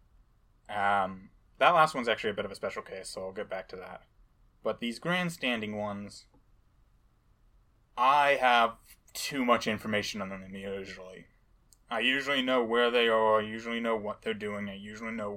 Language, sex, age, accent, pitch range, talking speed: English, male, 20-39, American, 105-115 Hz, 170 wpm